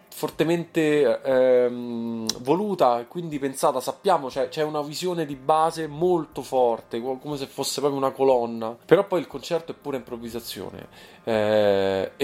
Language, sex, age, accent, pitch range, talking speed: Italian, male, 20-39, native, 115-145 Hz, 145 wpm